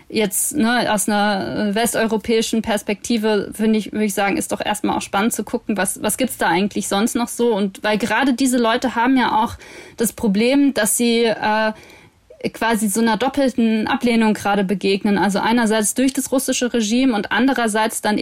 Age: 20-39